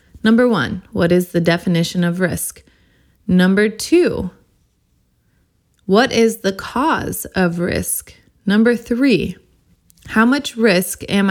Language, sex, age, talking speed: English, female, 20-39, 115 wpm